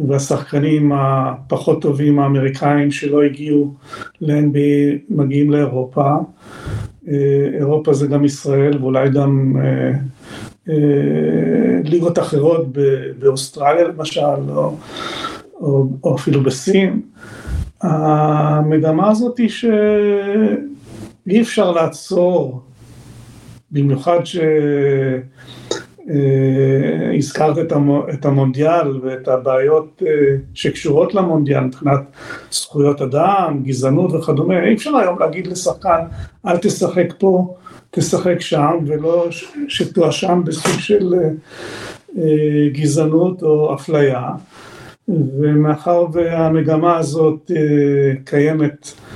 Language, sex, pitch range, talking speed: Hebrew, male, 140-170 Hz, 80 wpm